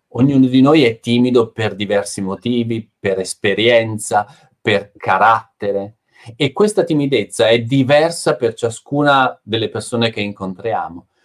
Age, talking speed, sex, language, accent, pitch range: 40-59, 125 wpm, male, Italian, native, 110-145 Hz